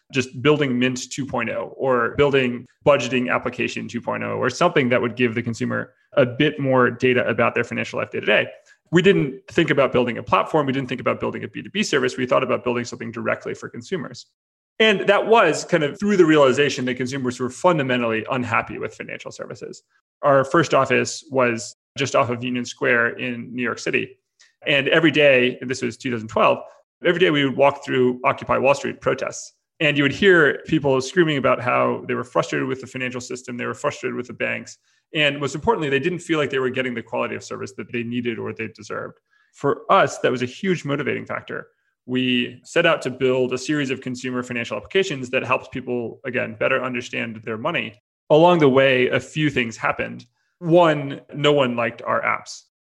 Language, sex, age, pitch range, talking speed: English, male, 30-49, 125-145 Hz, 200 wpm